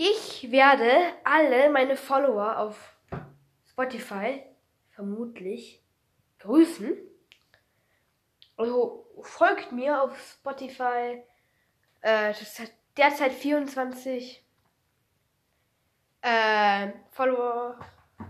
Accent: German